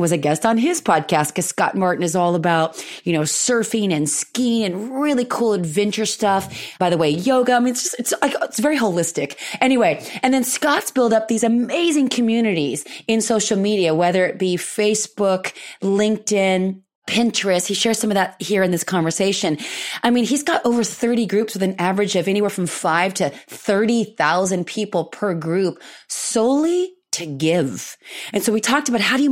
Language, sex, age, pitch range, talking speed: English, female, 30-49, 175-230 Hz, 185 wpm